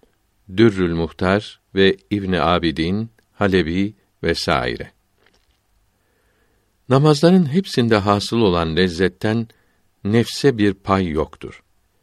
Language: Turkish